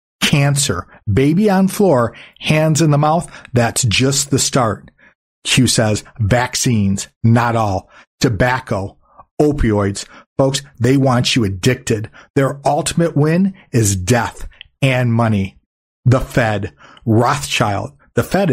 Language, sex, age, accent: English, male, 50-69, American